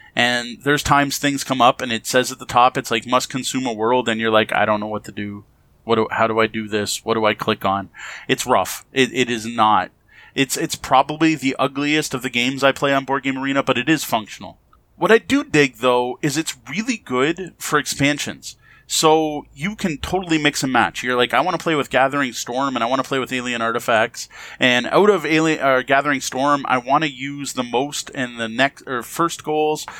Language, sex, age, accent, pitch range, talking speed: English, male, 30-49, American, 125-155 Hz, 235 wpm